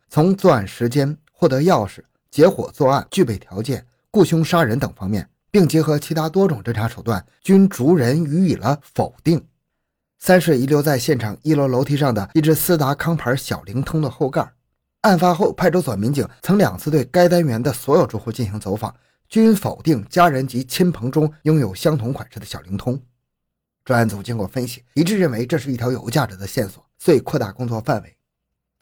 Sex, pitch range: male, 115-160 Hz